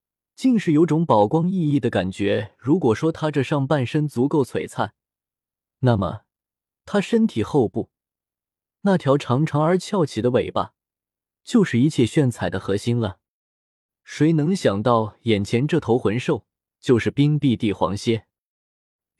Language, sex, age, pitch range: Chinese, male, 20-39, 110-160 Hz